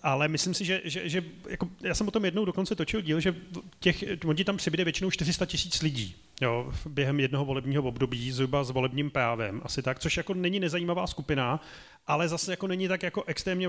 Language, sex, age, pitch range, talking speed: Czech, male, 30-49, 145-175 Hz, 205 wpm